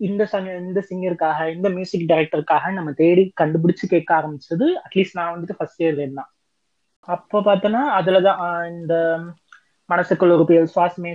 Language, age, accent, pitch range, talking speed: Tamil, 20-39, native, 165-205 Hz, 140 wpm